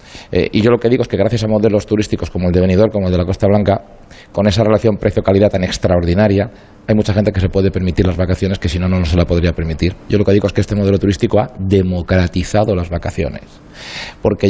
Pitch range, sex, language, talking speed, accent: 90-105 Hz, male, Spanish, 250 wpm, Spanish